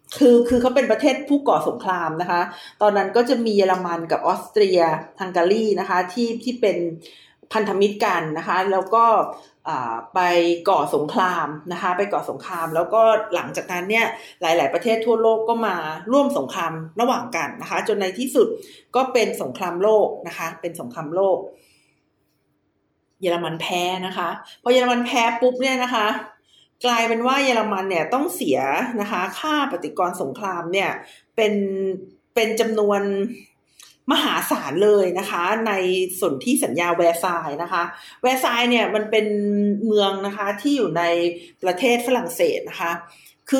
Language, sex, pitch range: Thai, female, 175-240 Hz